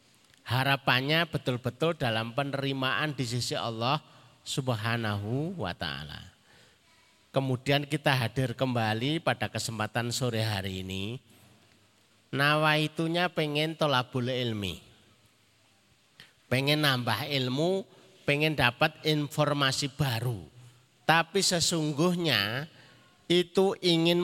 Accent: native